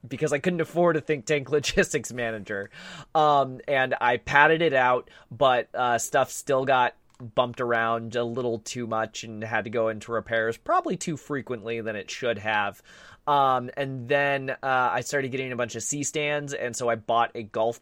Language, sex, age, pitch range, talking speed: English, male, 20-39, 115-145 Hz, 190 wpm